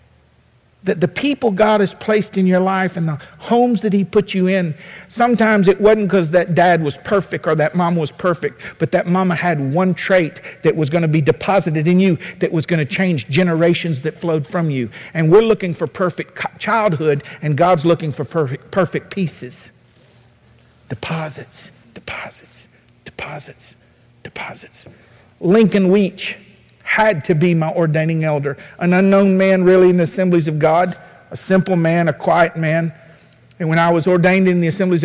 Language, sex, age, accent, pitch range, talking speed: English, male, 50-69, American, 160-190 Hz, 175 wpm